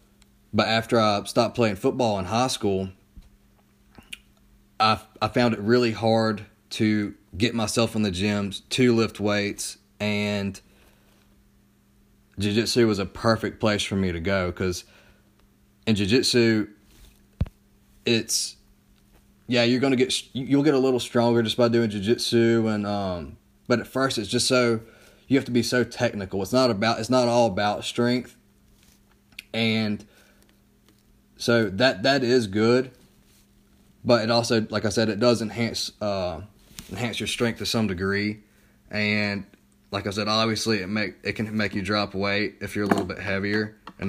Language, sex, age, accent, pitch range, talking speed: English, male, 30-49, American, 100-120 Hz, 160 wpm